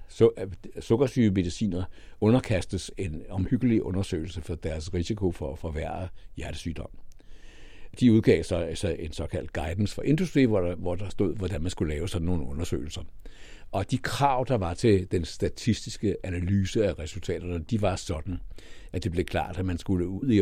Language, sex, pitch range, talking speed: Danish, male, 85-110 Hz, 170 wpm